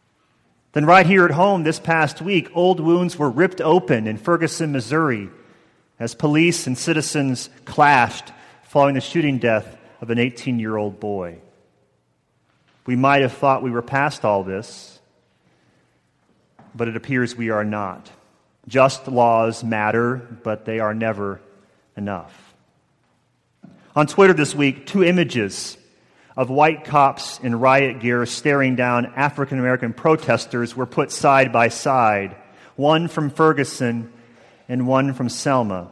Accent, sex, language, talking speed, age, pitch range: American, male, English, 135 wpm, 40-59, 110-140 Hz